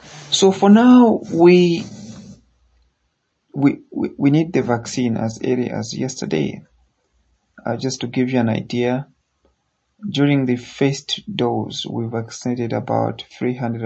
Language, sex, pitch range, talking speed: English, male, 105-125 Hz, 125 wpm